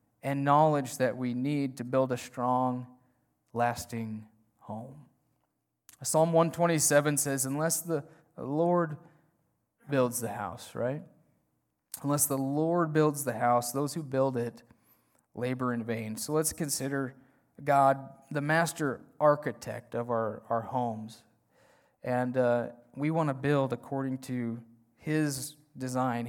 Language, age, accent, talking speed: English, 30-49, American, 125 wpm